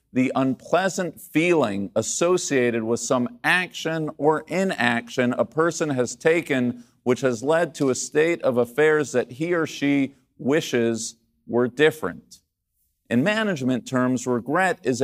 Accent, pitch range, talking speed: American, 125-160 Hz, 130 wpm